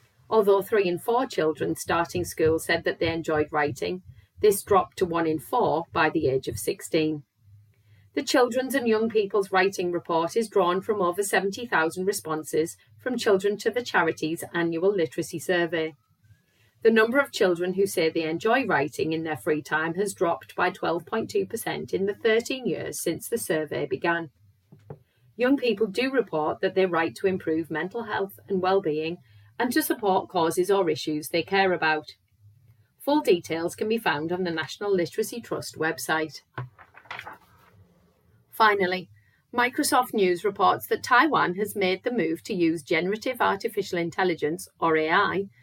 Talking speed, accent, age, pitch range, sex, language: 155 wpm, British, 40-59, 155-215 Hz, female, English